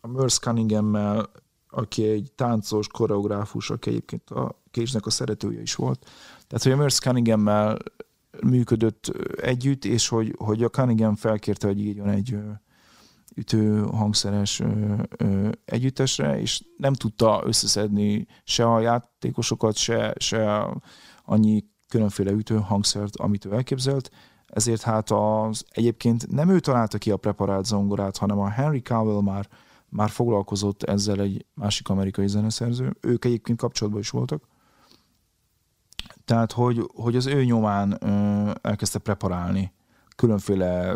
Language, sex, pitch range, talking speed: Hungarian, male, 100-120 Hz, 125 wpm